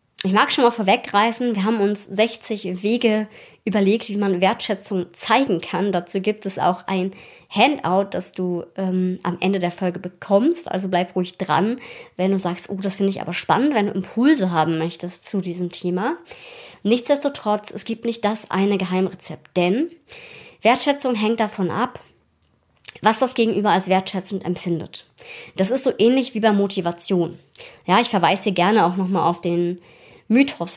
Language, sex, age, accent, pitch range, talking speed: German, male, 20-39, German, 185-220 Hz, 170 wpm